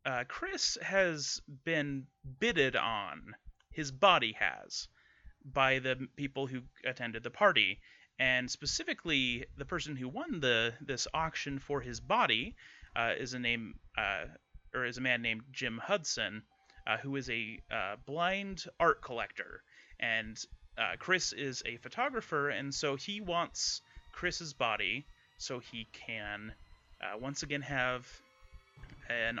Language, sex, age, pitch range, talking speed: English, male, 30-49, 115-140 Hz, 140 wpm